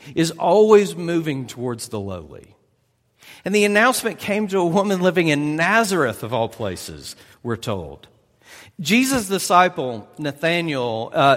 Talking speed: 130 wpm